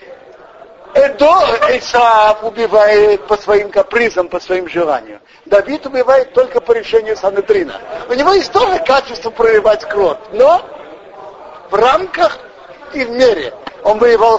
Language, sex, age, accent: Russian, male, 50-69, native